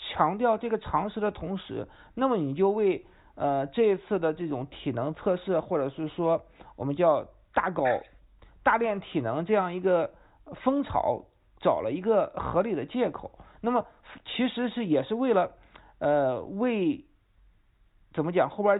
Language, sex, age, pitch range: Chinese, male, 50-69, 170-235 Hz